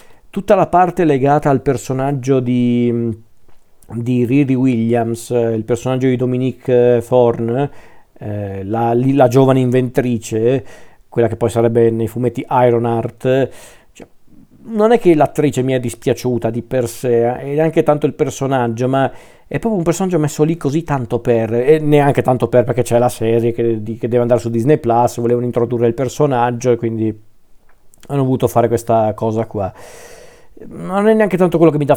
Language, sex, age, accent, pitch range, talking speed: Italian, male, 40-59, native, 115-135 Hz, 170 wpm